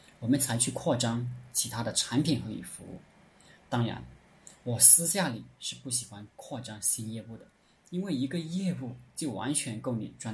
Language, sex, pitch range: Chinese, male, 110-135 Hz